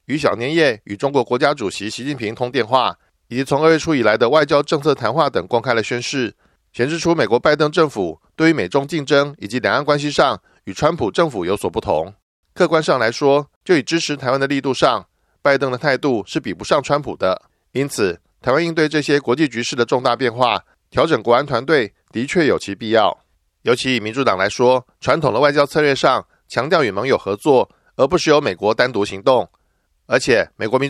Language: Chinese